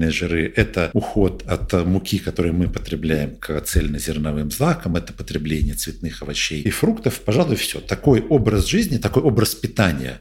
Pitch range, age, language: 80-110 Hz, 50-69, Russian